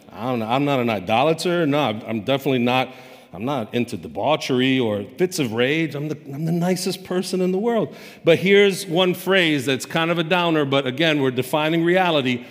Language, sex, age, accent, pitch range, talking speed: English, male, 50-69, American, 140-195 Hz, 190 wpm